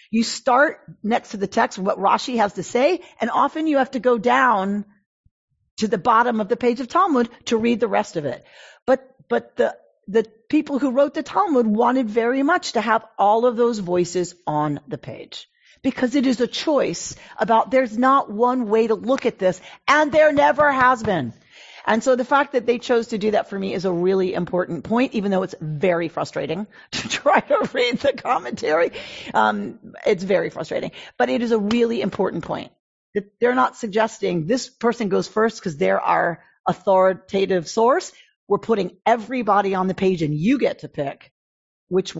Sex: female